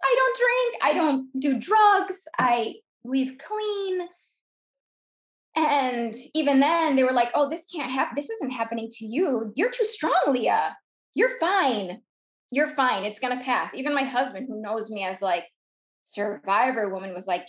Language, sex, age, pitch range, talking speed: English, female, 10-29, 200-280 Hz, 170 wpm